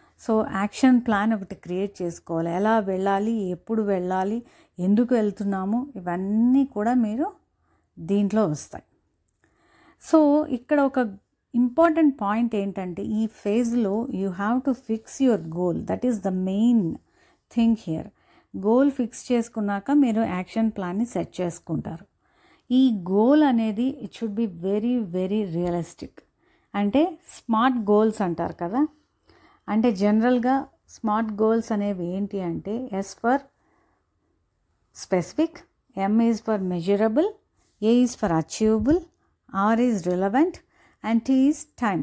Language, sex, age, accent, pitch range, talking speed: Telugu, female, 30-49, native, 200-255 Hz, 110 wpm